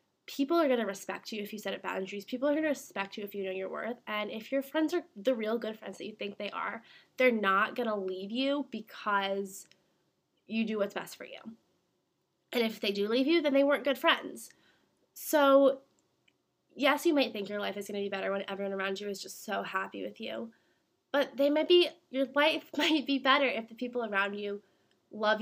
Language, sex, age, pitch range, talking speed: English, female, 20-39, 195-260 Hz, 220 wpm